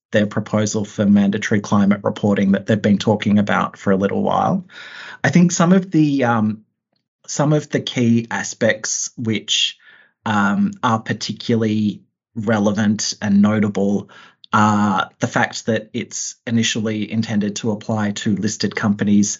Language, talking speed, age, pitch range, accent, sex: English, 140 wpm, 30-49, 105-140 Hz, Australian, male